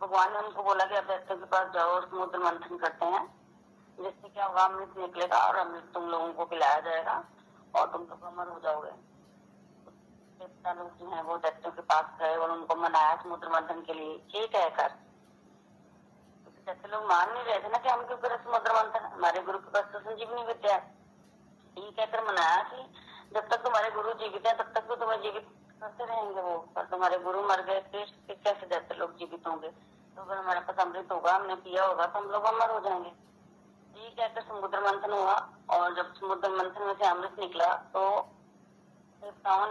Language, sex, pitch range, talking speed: Hindi, female, 175-205 Hz, 185 wpm